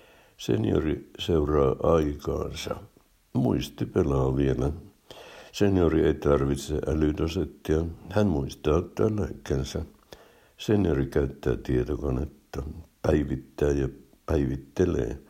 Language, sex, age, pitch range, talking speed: Finnish, male, 60-79, 70-90 Hz, 80 wpm